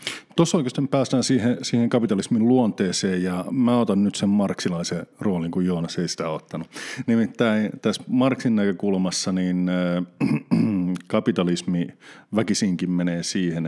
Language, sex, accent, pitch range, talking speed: Finnish, male, native, 85-110 Hz, 125 wpm